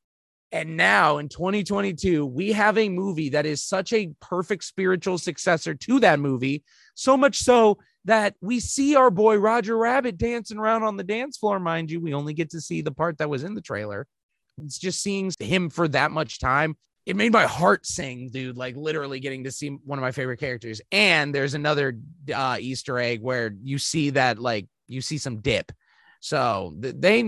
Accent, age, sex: American, 30-49, male